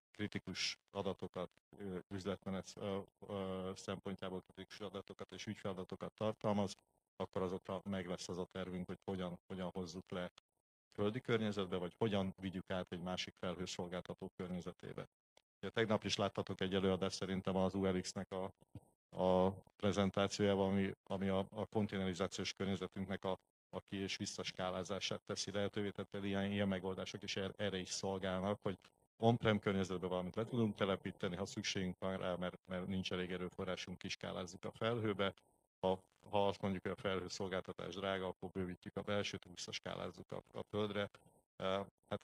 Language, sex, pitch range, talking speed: Hungarian, male, 95-100 Hz, 140 wpm